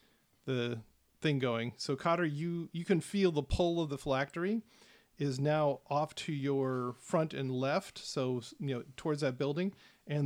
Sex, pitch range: male, 130-165 Hz